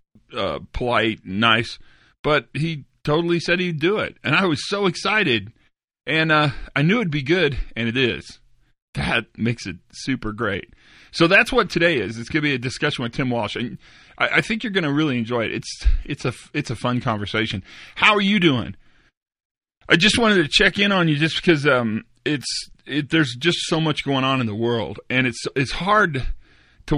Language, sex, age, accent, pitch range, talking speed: English, male, 40-59, American, 110-155 Hz, 205 wpm